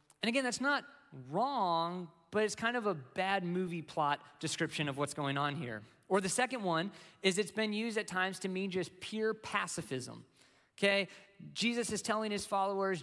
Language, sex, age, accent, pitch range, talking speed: English, male, 20-39, American, 160-210 Hz, 185 wpm